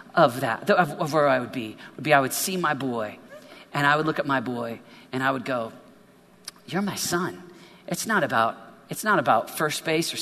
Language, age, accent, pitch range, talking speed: English, 40-59, American, 135-195 Hz, 225 wpm